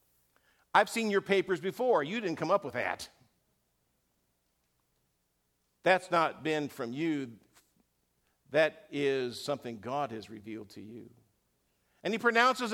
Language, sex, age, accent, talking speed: English, male, 50-69, American, 125 wpm